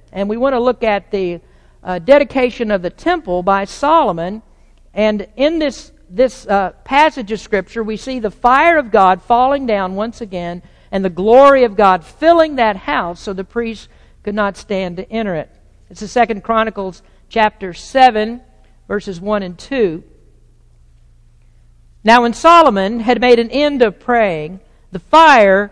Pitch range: 185-245 Hz